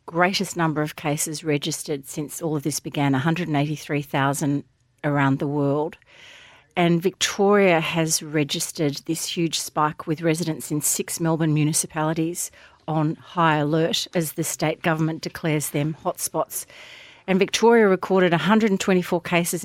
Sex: female